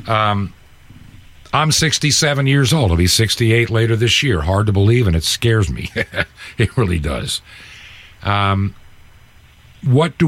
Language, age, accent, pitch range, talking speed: English, 50-69, American, 90-115 Hz, 150 wpm